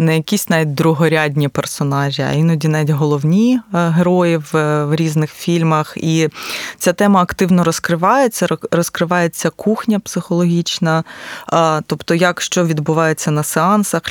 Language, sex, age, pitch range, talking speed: Ukrainian, female, 20-39, 160-185 Hz, 115 wpm